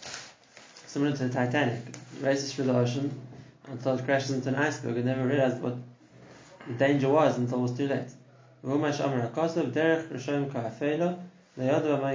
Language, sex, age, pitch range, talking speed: English, male, 20-39, 125-150 Hz, 135 wpm